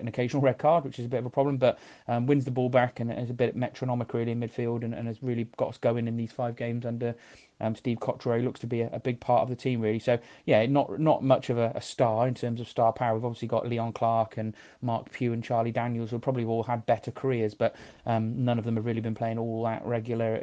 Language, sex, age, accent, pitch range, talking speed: English, male, 30-49, British, 115-135 Hz, 280 wpm